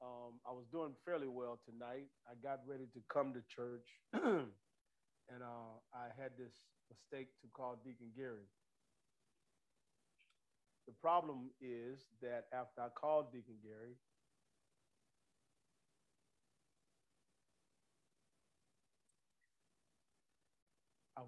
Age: 50-69